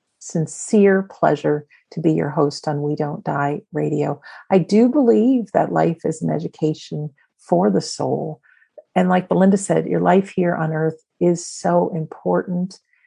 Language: English